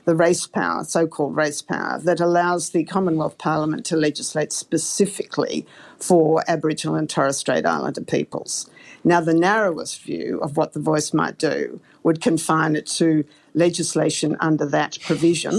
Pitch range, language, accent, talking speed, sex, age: 155-190 Hz, English, Australian, 150 wpm, female, 50-69